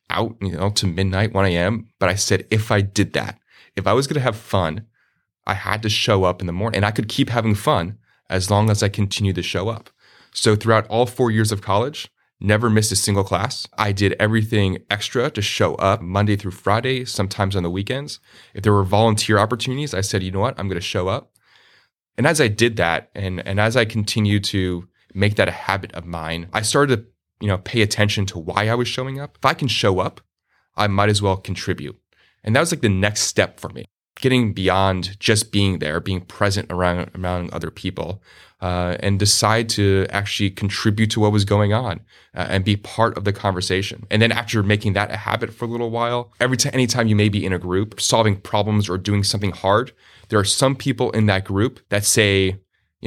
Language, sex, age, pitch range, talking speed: English, male, 20-39, 95-110 Hz, 220 wpm